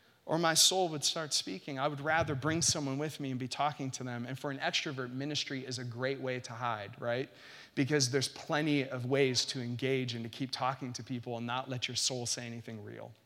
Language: English